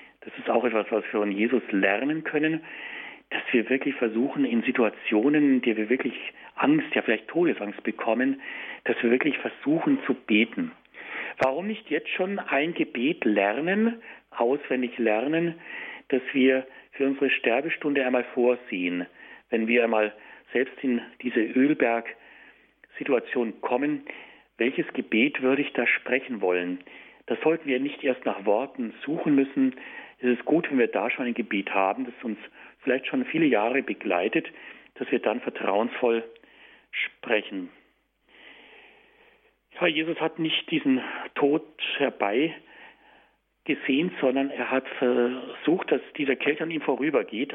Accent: German